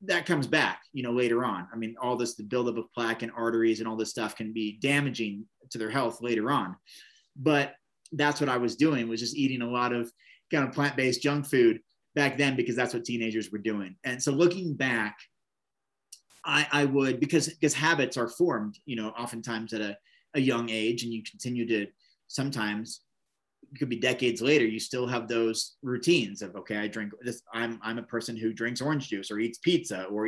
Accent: American